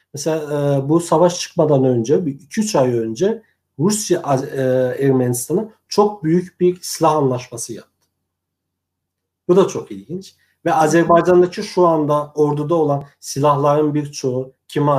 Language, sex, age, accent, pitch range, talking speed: Turkish, male, 50-69, native, 125-165 Hz, 125 wpm